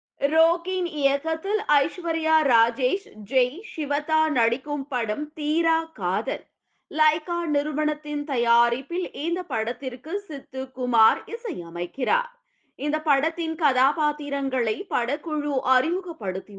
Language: Tamil